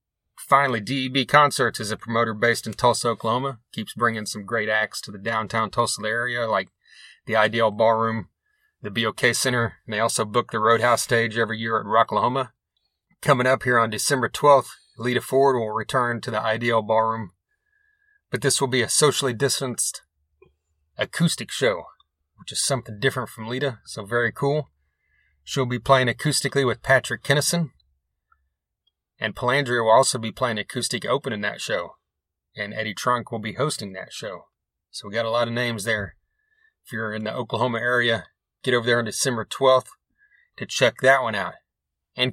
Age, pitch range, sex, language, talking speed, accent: 30-49, 110-130 Hz, male, English, 175 wpm, American